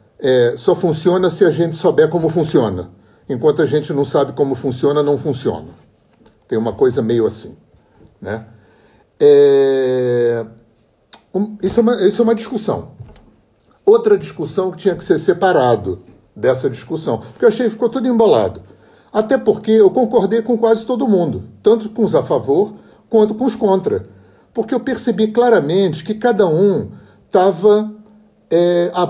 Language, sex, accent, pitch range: Portuguese, male, Brazilian, 135-220 Hz